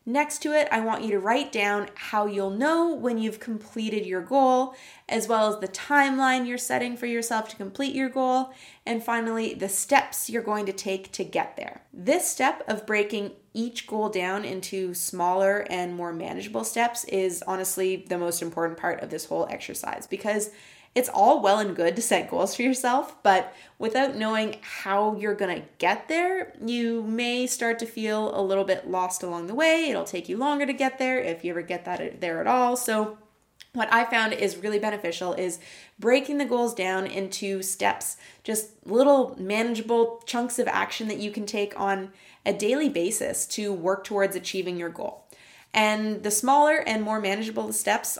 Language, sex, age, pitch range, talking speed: English, female, 20-39, 195-245 Hz, 190 wpm